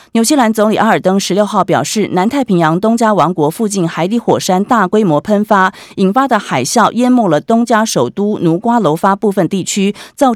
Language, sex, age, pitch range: Chinese, female, 30-49, 165-240 Hz